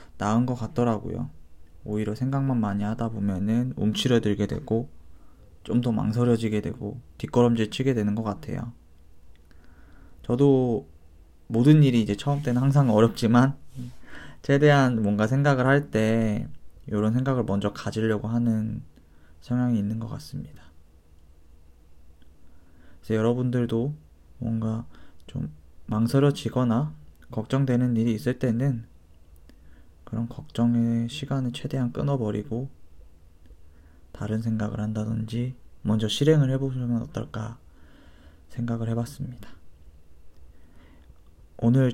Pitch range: 80-120 Hz